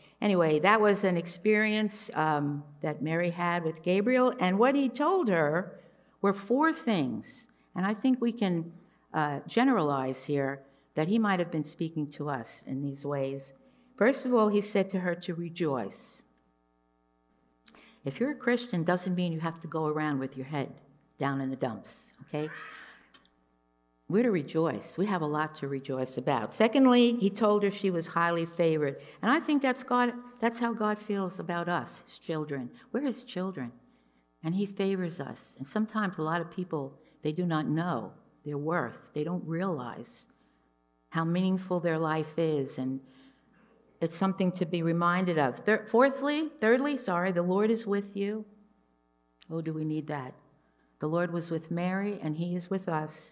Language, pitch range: English, 145-205 Hz